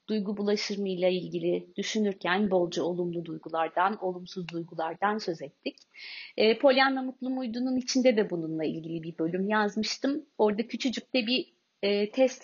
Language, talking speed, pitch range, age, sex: Turkish, 145 wpm, 180-235 Hz, 30-49, female